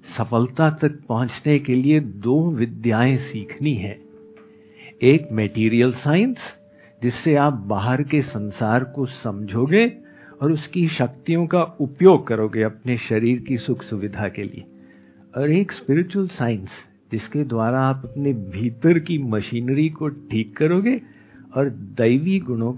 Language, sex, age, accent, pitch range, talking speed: Hindi, male, 50-69, native, 110-155 Hz, 130 wpm